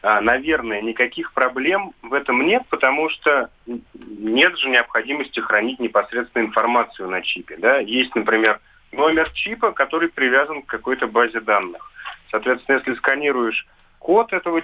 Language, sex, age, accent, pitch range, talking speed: Russian, male, 30-49, native, 110-140 Hz, 125 wpm